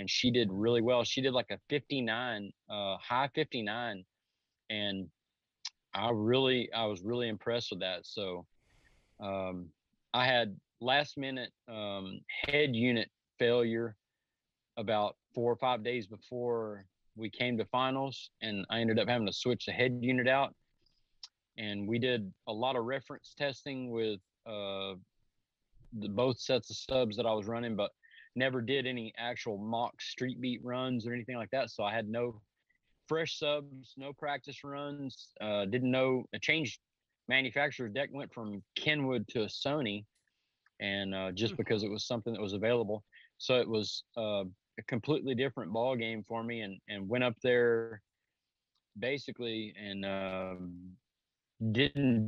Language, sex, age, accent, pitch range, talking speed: English, male, 40-59, American, 105-125 Hz, 155 wpm